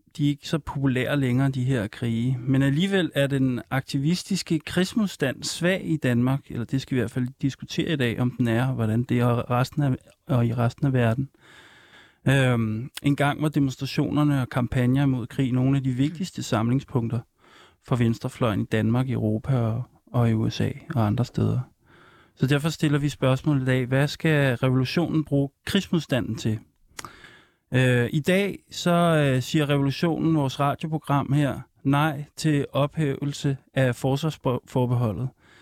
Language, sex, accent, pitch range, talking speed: Danish, male, native, 125-160 Hz, 160 wpm